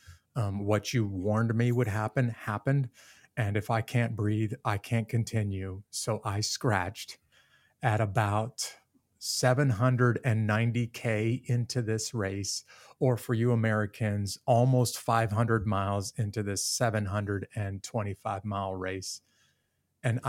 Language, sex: English, male